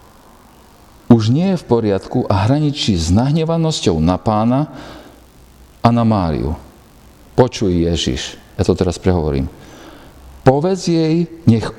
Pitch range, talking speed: 90-140 Hz, 115 wpm